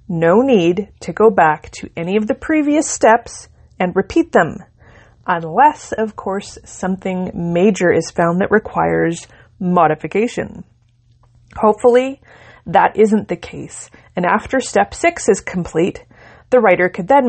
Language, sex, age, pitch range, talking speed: English, female, 30-49, 155-220 Hz, 135 wpm